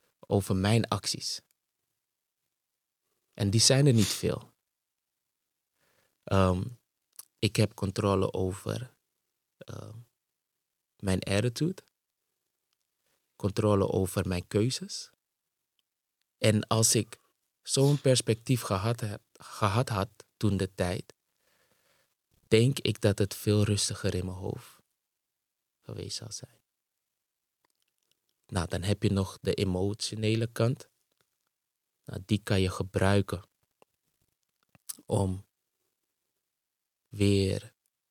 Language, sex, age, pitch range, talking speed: Dutch, male, 20-39, 95-115 Hz, 90 wpm